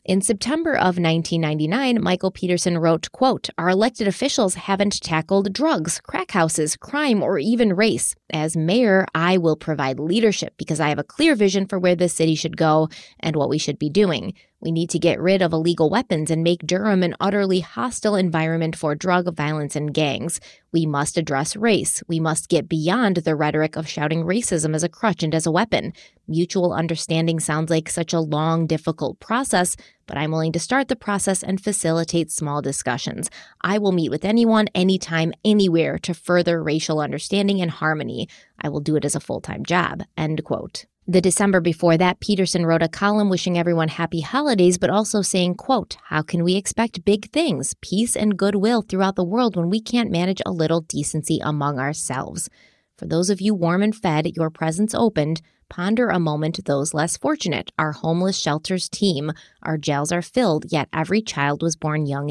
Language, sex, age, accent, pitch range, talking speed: English, female, 20-39, American, 160-200 Hz, 185 wpm